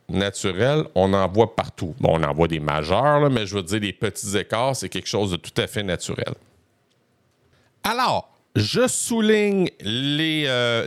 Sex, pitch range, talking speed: male, 100-140 Hz, 175 wpm